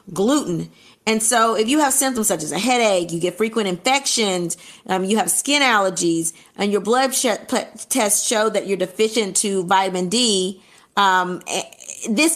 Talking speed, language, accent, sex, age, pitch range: 160 wpm, English, American, female, 30-49, 185-255 Hz